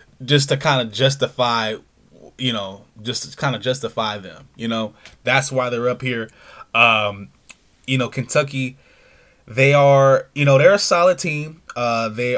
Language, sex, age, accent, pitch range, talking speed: English, male, 20-39, American, 110-135 Hz, 165 wpm